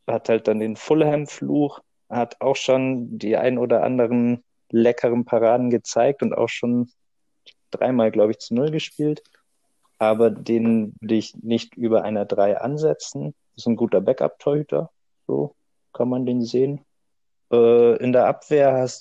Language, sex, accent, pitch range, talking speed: German, male, German, 110-130 Hz, 150 wpm